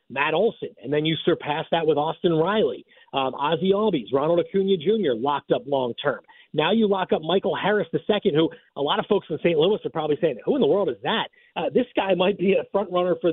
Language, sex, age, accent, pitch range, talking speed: English, male, 40-59, American, 150-205 Hz, 235 wpm